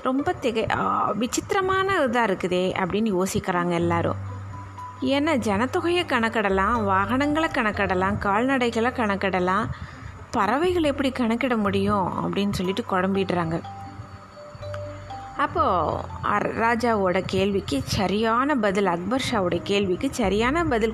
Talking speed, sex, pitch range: 90 wpm, female, 190-240 Hz